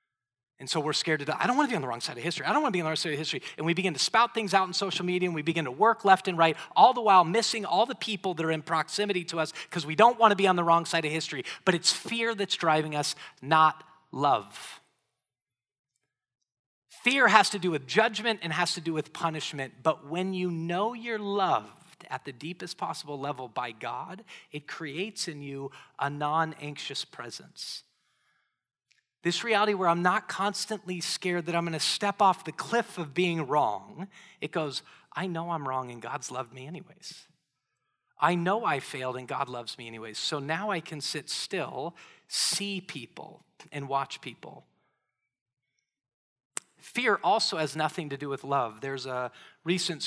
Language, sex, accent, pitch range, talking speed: English, male, American, 140-185 Hz, 205 wpm